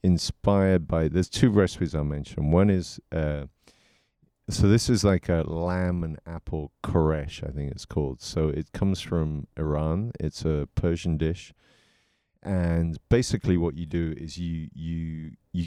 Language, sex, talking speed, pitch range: English, male, 155 wpm, 80-95 Hz